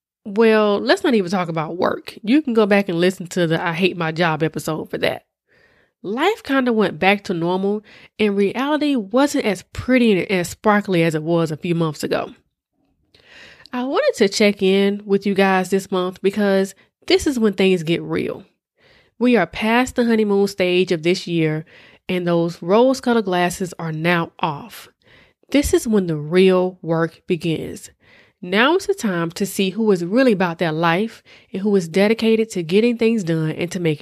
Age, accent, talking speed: 20-39, American, 190 wpm